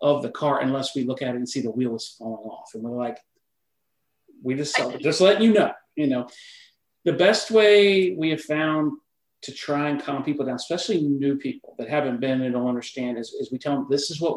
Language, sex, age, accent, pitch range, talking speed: English, male, 40-59, American, 125-150 Hz, 230 wpm